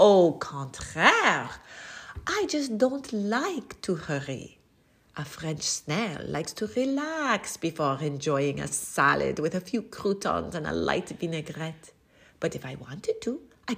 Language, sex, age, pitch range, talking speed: English, female, 40-59, 150-255 Hz, 140 wpm